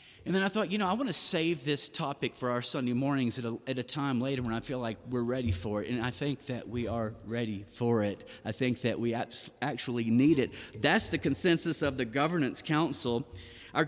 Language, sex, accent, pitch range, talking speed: English, male, American, 125-180 Hz, 230 wpm